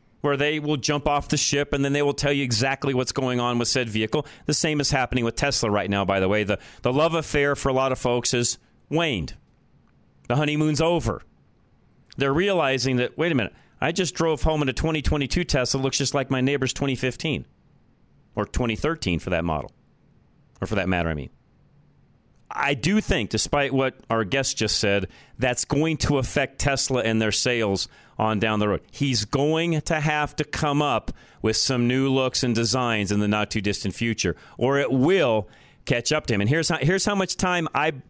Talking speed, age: 200 wpm, 40-59